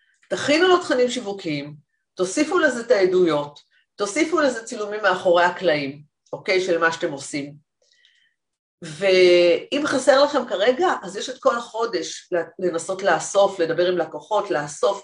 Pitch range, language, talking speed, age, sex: 175-280 Hz, Hebrew, 130 wpm, 40-59, female